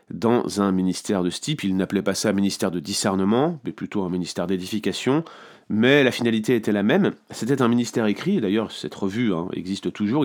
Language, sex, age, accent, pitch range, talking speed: French, male, 30-49, French, 105-130 Hz, 210 wpm